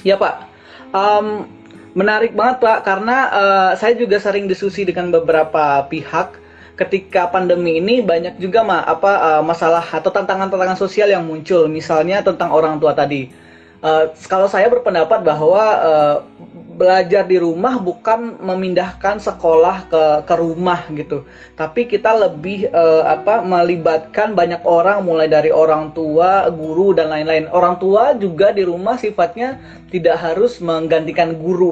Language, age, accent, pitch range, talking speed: Indonesian, 20-39, native, 160-195 Hz, 140 wpm